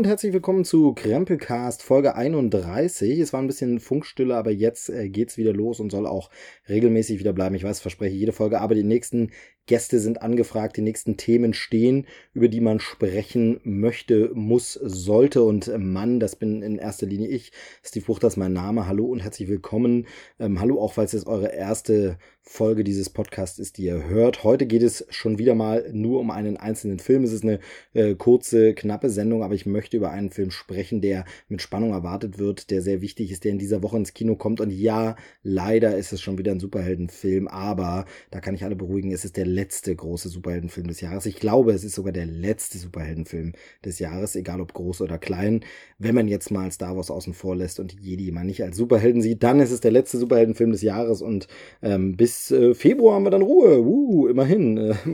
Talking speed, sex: 210 wpm, male